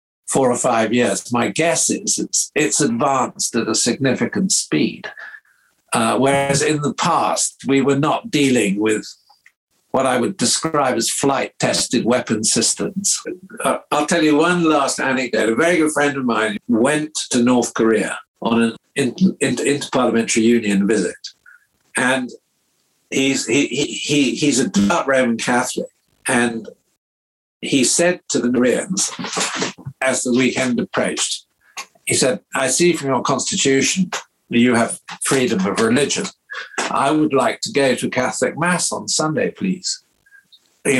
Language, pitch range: English, 115-165 Hz